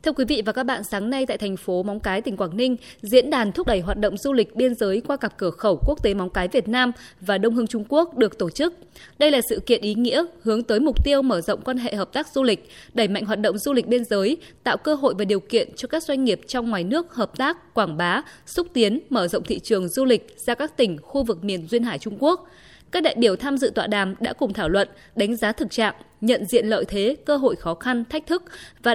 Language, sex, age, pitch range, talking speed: Vietnamese, female, 20-39, 205-275 Hz, 270 wpm